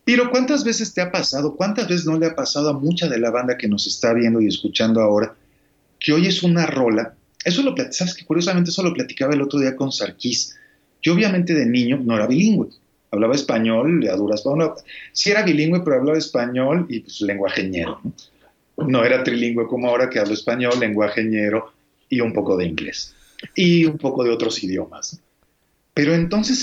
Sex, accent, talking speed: male, Mexican, 190 wpm